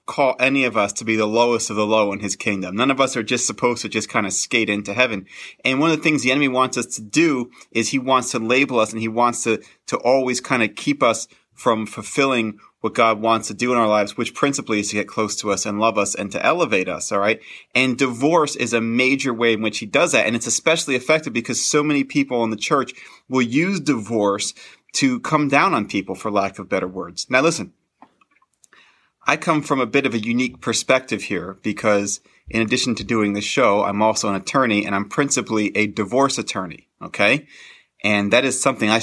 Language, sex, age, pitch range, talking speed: English, male, 30-49, 105-130 Hz, 230 wpm